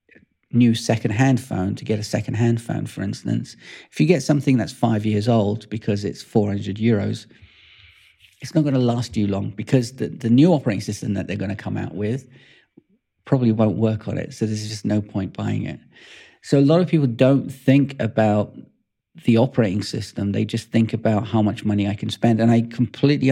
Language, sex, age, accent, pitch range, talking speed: English, male, 40-59, British, 105-120 Hz, 200 wpm